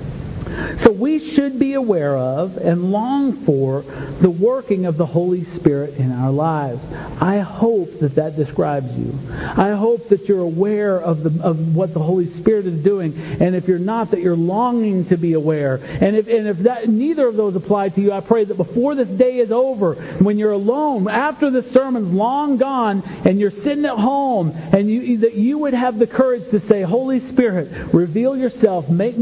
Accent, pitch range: American, 150-225 Hz